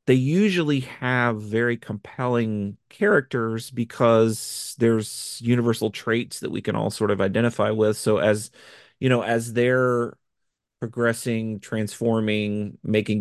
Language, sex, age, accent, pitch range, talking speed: English, male, 30-49, American, 100-120 Hz, 125 wpm